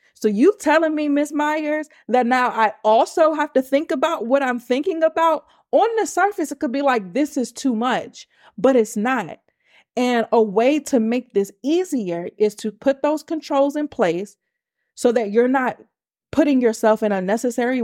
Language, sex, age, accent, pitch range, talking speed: English, female, 30-49, American, 210-265 Hz, 180 wpm